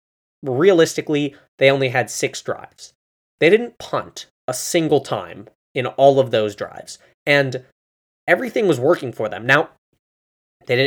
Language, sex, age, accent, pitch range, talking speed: English, male, 20-39, American, 115-155 Hz, 140 wpm